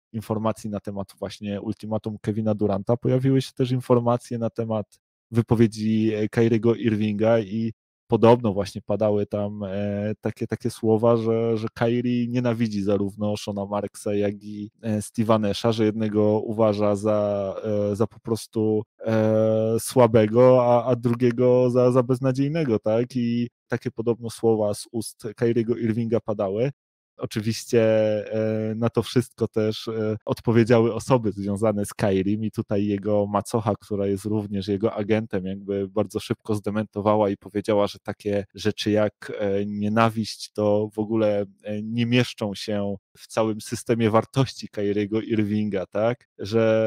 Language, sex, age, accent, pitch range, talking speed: Polish, male, 20-39, native, 105-115 Hz, 130 wpm